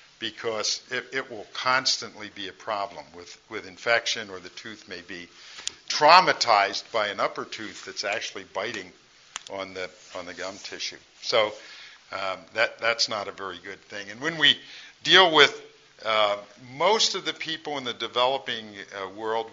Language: English